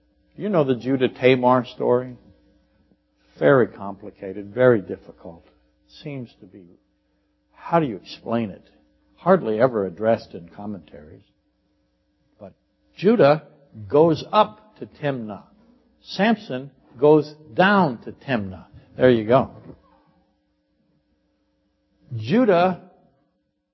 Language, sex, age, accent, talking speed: English, male, 60-79, American, 95 wpm